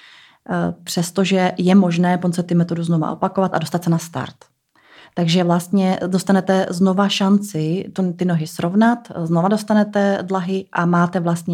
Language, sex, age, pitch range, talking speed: Czech, female, 30-49, 165-190 Hz, 140 wpm